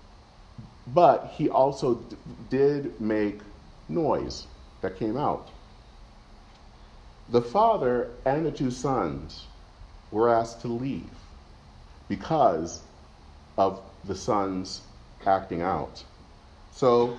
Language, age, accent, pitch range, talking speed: English, 40-59, American, 90-140 Hz, 95 wpm